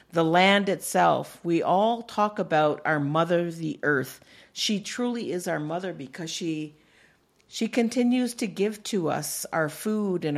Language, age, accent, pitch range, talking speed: English, 50-69, American, 165-205 Hz, 155 wpm